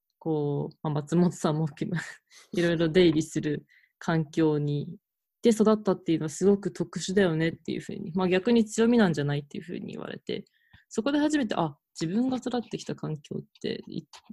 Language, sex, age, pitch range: Japanese, female, 20-39, 160-210 Hz